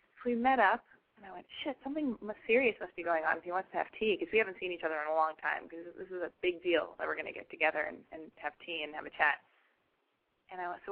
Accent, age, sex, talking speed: American, 20-39, female, 290 wpm